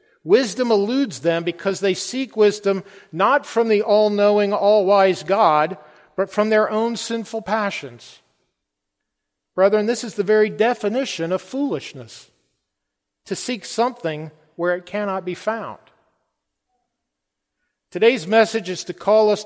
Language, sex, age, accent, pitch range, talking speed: English, male, 50-69, American, 170-215 Hz, 125 wpm